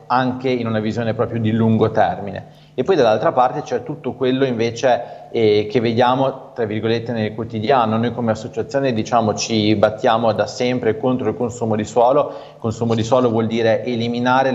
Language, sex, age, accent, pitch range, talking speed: Italian, male, 40-59, native, 110-125 Hz, 175 wpm